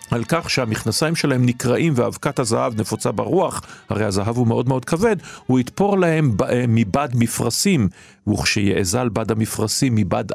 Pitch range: 105-140 Hz